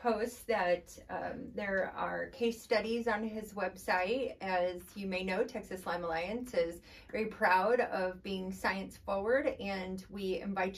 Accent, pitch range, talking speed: American, 190-230 Hz, 150 wpm